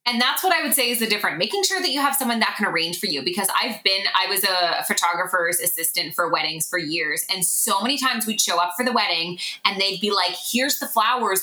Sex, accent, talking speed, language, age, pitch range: female, American, 255 wpm, English, 20-39, 185-235 Hz